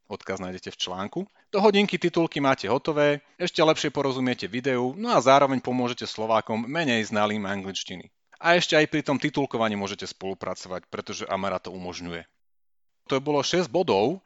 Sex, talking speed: male, 160 wpm